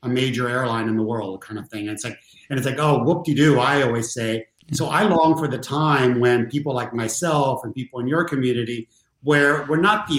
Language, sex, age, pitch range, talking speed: English, male, 50-69, 120-155 Hz, 240 wpm